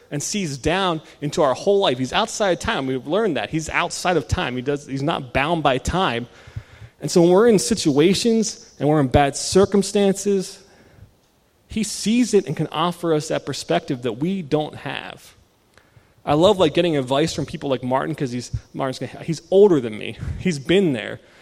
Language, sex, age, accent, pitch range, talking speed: English, male, 30-49, American, 130-170 Hz, 190 wpm